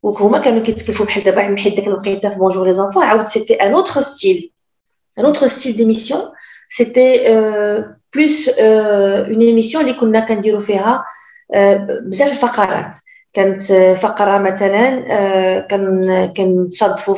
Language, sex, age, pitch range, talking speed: Arabic, female, 40-59, 190-250 Hz, 135 wpm